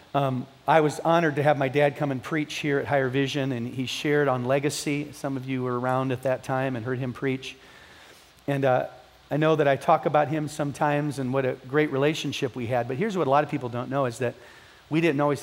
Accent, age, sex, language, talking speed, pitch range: American, 40-59, male, English, 240 wpm, 125-150 Hz